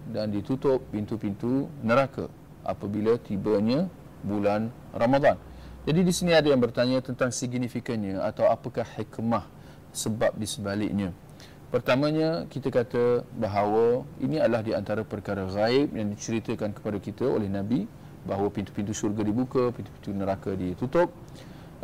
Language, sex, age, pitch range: Malay, male, 40-59, 105-135 Hz